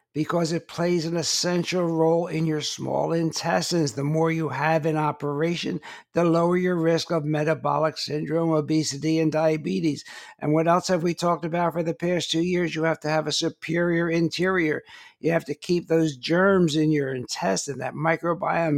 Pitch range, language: 140-170 Hz, English